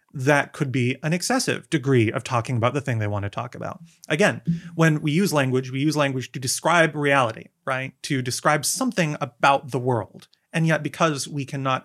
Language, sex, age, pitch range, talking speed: English, male, 30-49, 130-165 Hz, 200 wpm